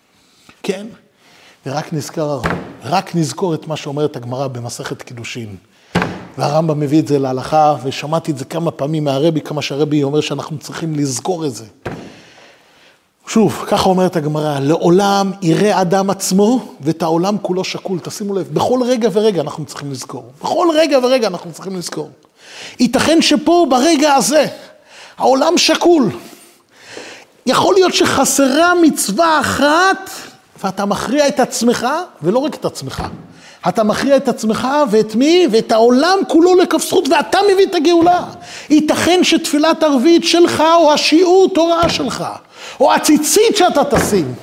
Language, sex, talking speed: Hebrew, male, 135 wpm